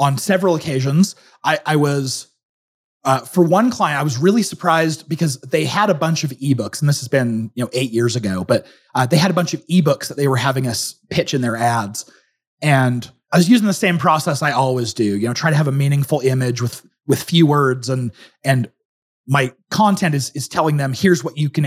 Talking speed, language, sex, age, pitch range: 225 wpm, English, male, 30-49, 130-175 Hz